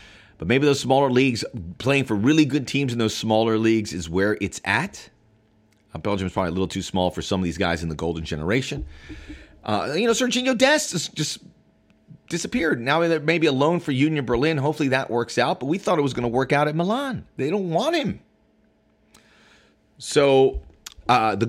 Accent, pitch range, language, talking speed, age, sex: American, 100-145 Hz, English, 200 wpm, 30-49, male